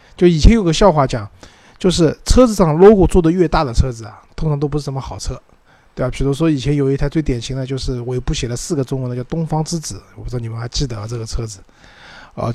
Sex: male